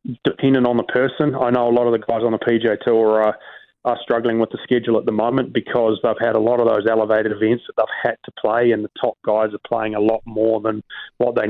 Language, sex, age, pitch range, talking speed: English, male, 30-49, 110-120 Hz, 265 wpm